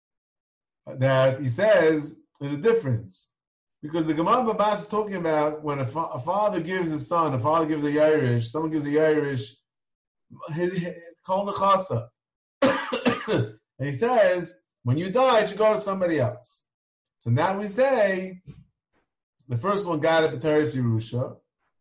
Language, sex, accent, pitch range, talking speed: English, male, American, 155-245 Hz, 170 wpm